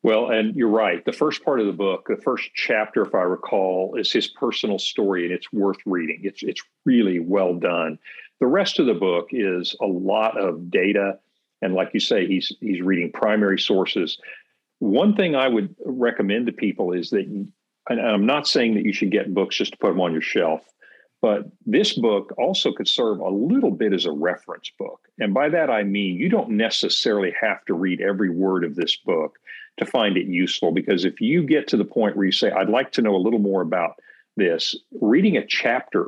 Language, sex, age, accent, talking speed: English, male, 50-69, American, 215 wpm